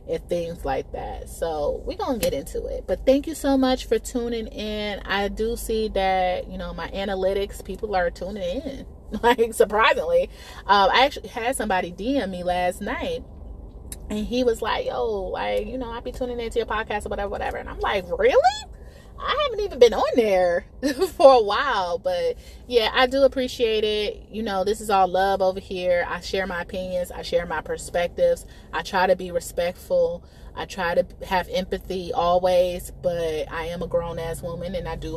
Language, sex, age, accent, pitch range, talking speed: English, female, 30-49, American, 185-275 Hz, 195 wpm